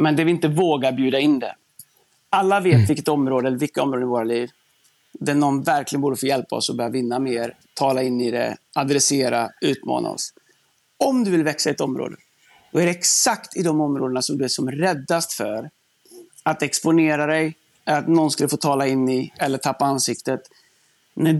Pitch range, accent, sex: 130-160 Hz, native, male